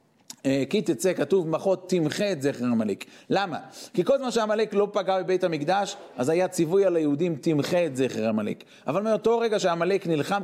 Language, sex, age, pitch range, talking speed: Hebrew, male, 40-59, 150-200 Hz, 185 wpm